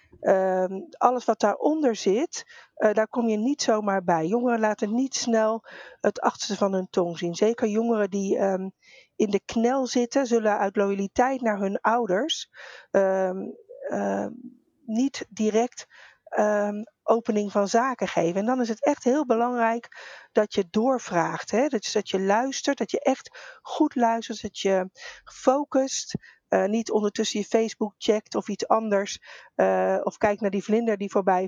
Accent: Dutch